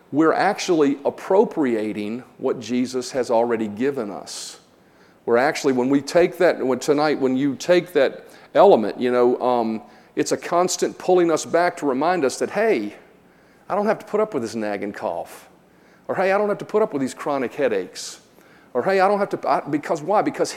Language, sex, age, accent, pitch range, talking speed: English, male, 40-59, American, 120-175 Hz, 195 wpm